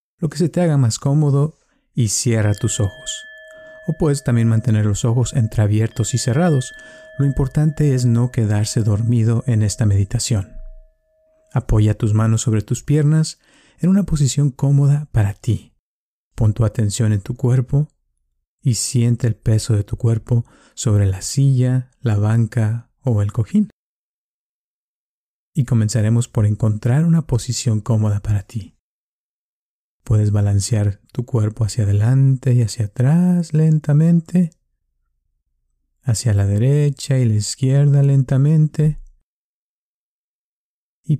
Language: Spanish